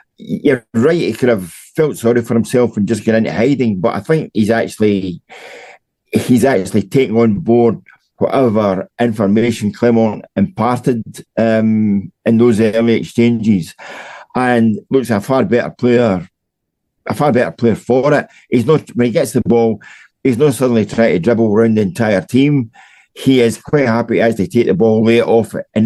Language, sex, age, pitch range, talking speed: English, male, 50-69, 110-130 Hz, 175 wpm